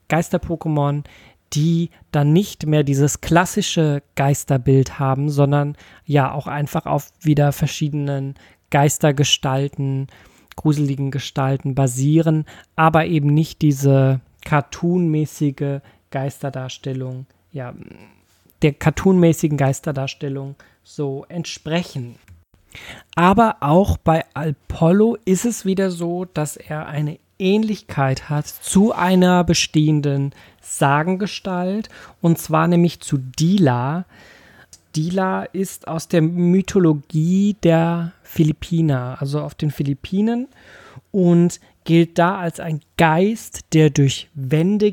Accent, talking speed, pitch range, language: German, 100 wpm, 140-175 Hz, German